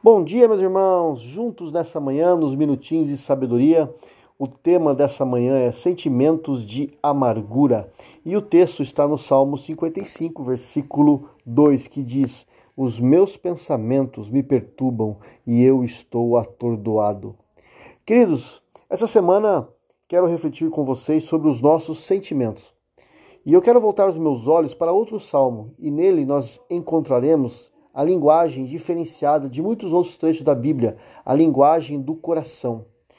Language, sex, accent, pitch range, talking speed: Portuguese, male, Brazilian, 130-170 Hz, 140 wpm